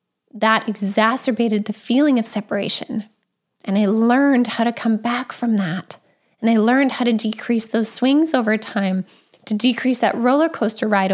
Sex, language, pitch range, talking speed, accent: female, English, 205-240 Hz, 165 wpm, American